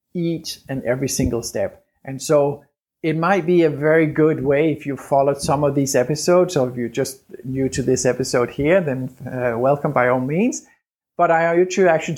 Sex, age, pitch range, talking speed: male, 50-69, 130-160 Hz, 200 wpm